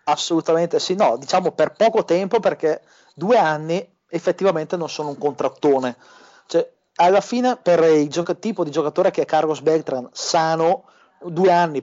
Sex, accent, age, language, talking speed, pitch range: male, native, 30-49, Italian, 155 wpm, 145-180 Hz